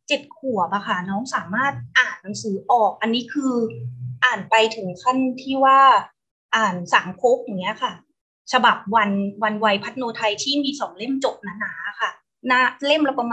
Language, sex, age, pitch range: Thai, female, 20-39, 215-275 Hz